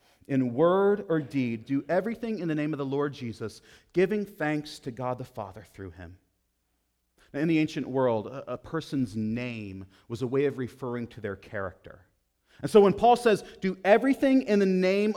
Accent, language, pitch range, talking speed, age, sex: American, English, 110-180 Hz, 180 wpm, 30-49, male